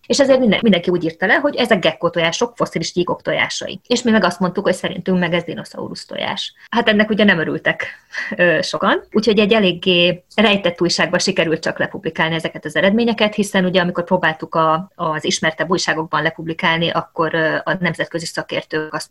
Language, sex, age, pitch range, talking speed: Hungarian, female, 20-39, 165-210 Hz, 165 wpm